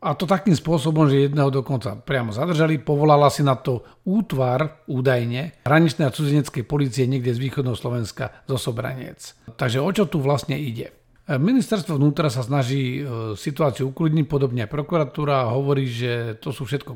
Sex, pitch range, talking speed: male, 130-155 Hz, 160 wpm